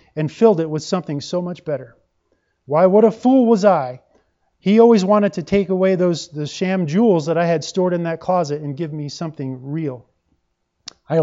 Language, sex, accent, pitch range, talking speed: English, male, American, 150-190 Hz, 200 wpm